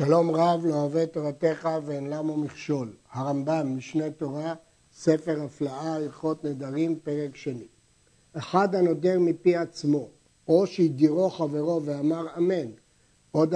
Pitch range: 150-175 Hz